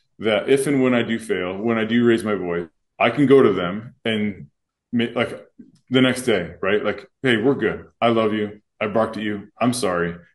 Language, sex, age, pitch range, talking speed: English, male, 20-39, 100-125 Hz, 215 wpm